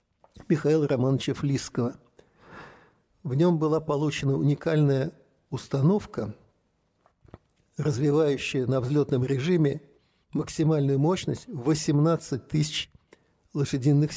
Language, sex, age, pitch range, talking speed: Russian, male, 60-79, 130-155 Hz, 75 wpm